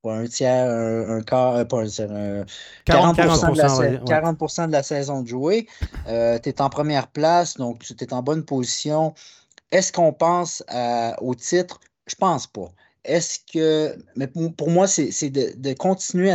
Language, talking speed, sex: French, 190 wpm, male